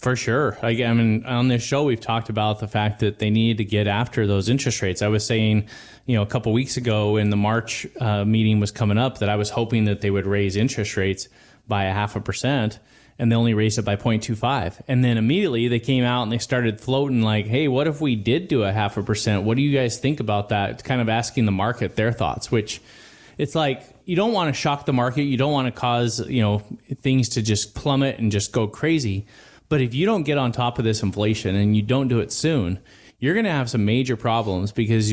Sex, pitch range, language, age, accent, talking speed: male, 105-130 Hz, English, 20-39, American, 250 wpm